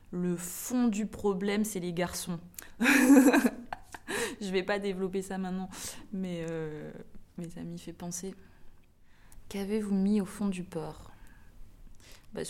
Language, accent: French, French